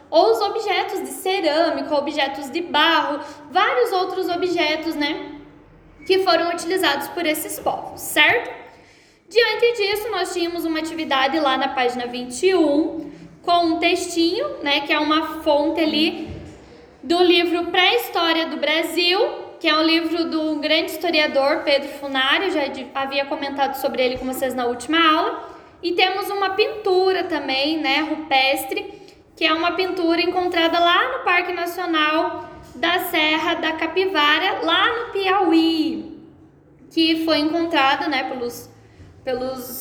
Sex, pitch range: female, 290-360 Hz